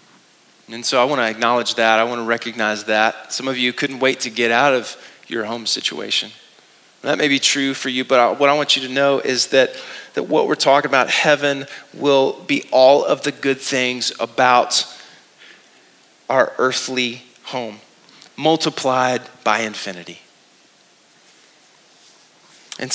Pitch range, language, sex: 115-140 Hz, English, male